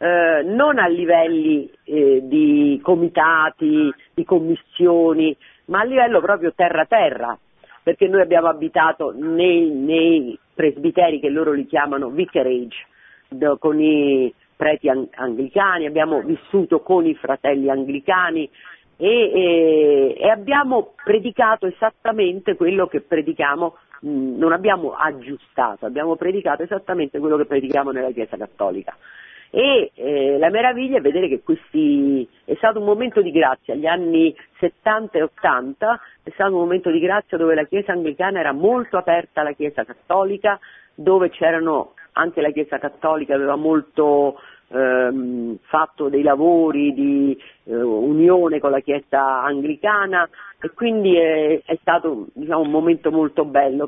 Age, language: 40-59, Italian